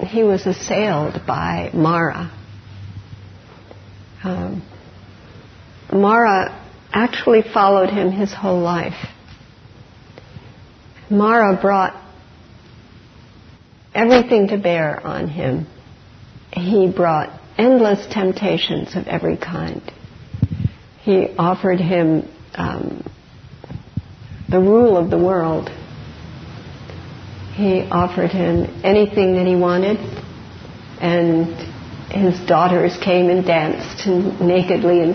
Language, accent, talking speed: English, American, 85 wpm